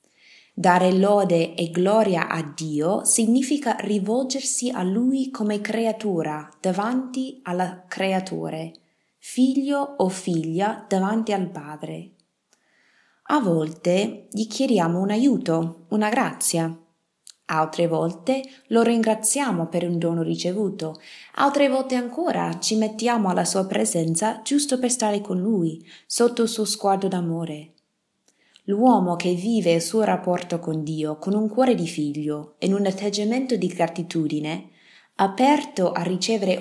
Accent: native